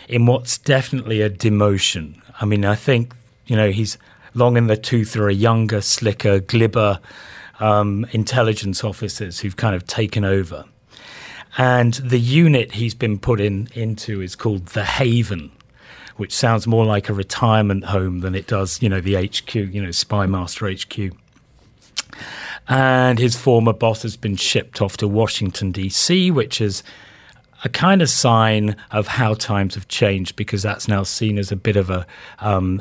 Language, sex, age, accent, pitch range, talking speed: English, male, 40-59, British, 100-120 Hz, 165 wpm